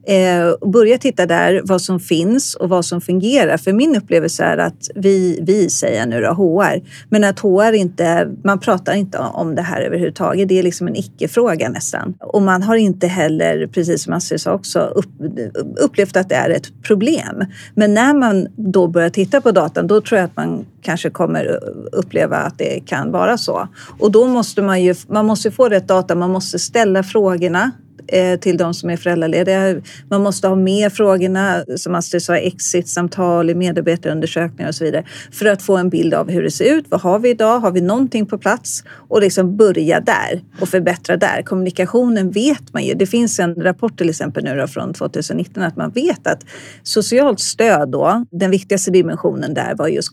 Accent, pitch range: Swedish, 175-210 Hz